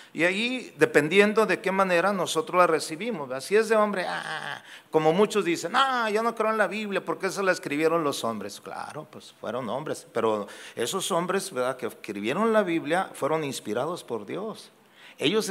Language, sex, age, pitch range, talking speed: Spanish, male, 50-69, 140-200 Hz, 190 wpm